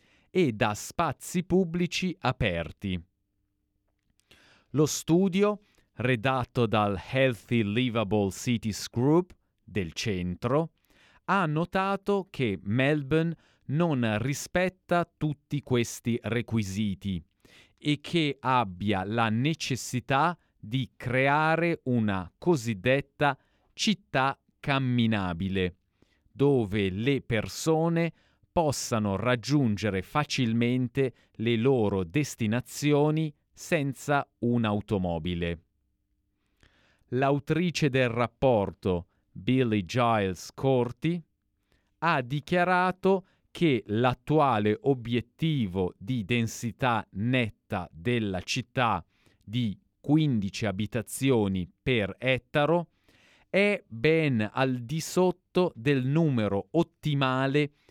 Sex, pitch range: male, 105-150 Hz